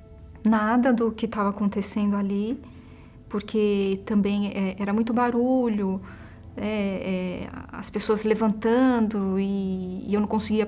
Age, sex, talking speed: 20-39, female, 125 wpm